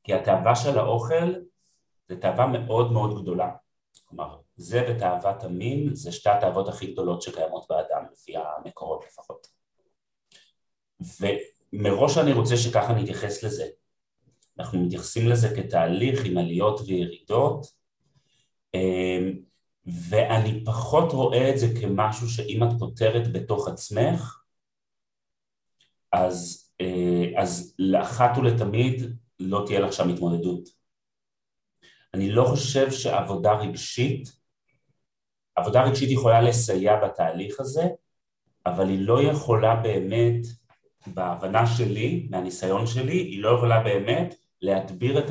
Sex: male